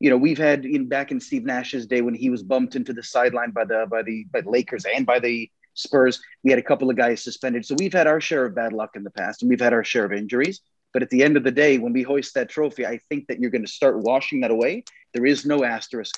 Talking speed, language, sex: 290 wpm, English, male